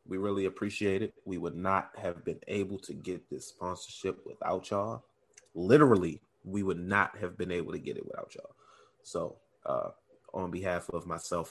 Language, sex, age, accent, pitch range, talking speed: English, male, 30-49, American, 95-130 Hz, 175 wpm